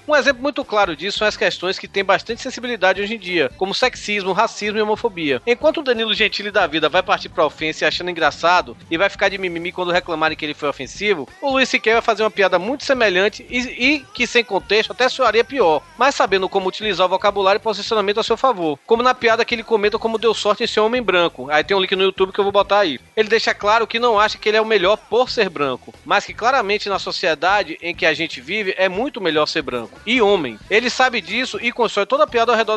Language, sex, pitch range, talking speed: Portuguese, male, 165-225 Hz, 250 wpm